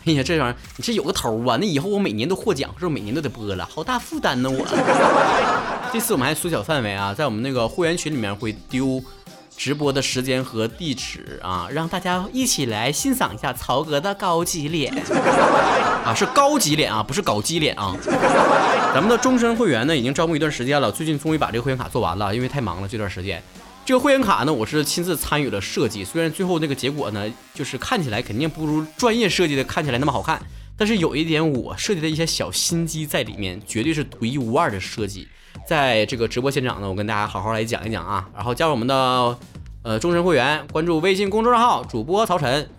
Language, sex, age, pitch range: Chinese, male, 20-39, 125-180 Hz